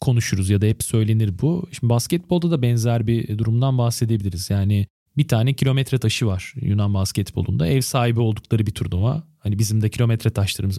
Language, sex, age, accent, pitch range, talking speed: Turkish, male, 40-59, native, 105-130 Hz, 170 wpm